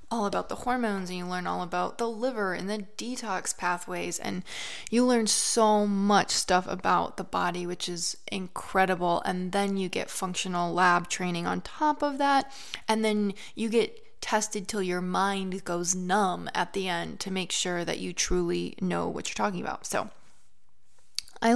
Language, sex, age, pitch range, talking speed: English, female, 20-39, 185-225 Hz, 180 wpm